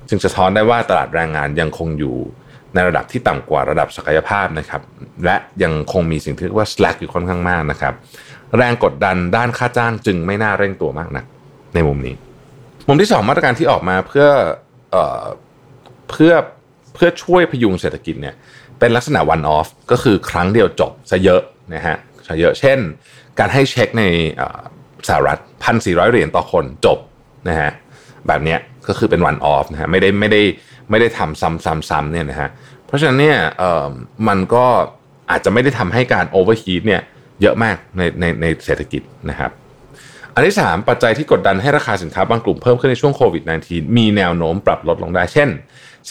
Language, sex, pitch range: Thai, male, 80-115 Hz